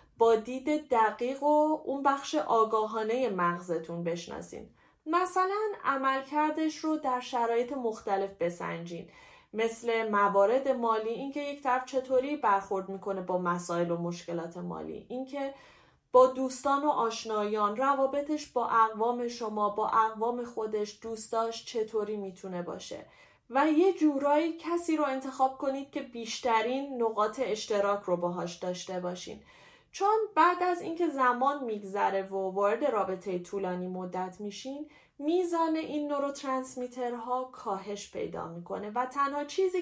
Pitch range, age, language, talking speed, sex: 200-280 Hz, 30-49, Persian, 125 wpm, female